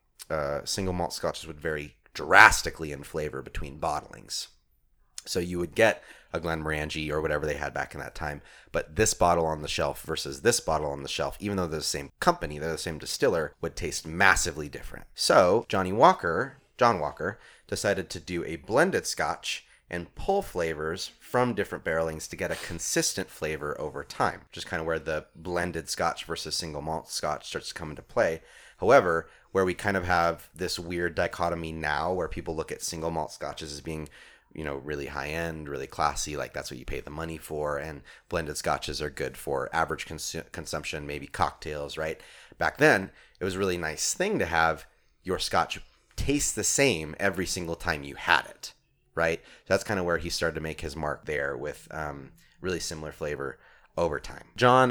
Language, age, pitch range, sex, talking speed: English, 30-49, 80-105 Hz, male, 190 wpm